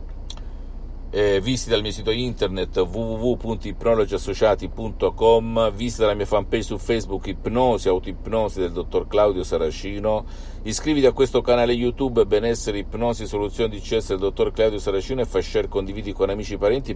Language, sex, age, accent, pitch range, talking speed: Italian, male, 50-69, native, 95-130 Hz, 145 wpm